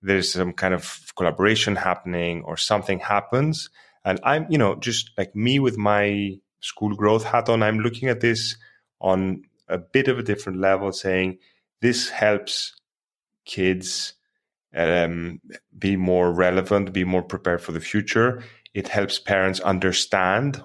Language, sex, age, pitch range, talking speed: English, male, 30-49, 90-110 Hz, 150 wpm